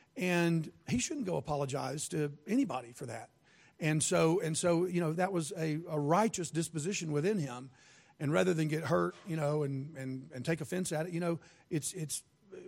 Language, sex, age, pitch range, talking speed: English, male, 40-59, 140-170 Hz, 195 wpm